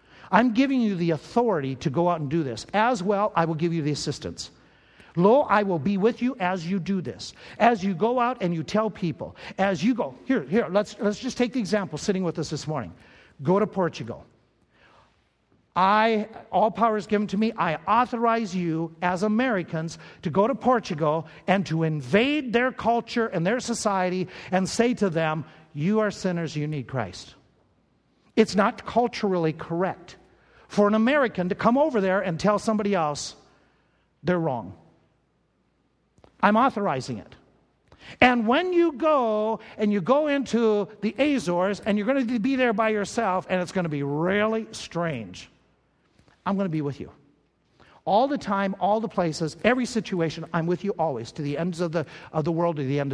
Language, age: English, 50-69